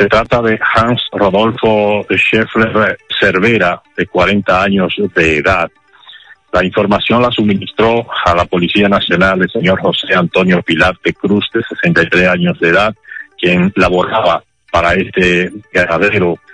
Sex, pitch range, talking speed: male, 90-105 Hz, 135 wpm